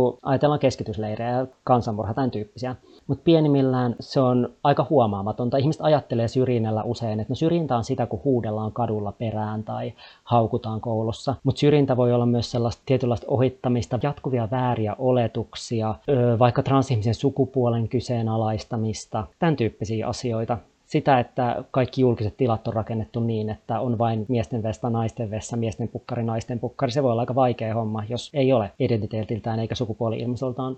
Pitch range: 115-130 Hz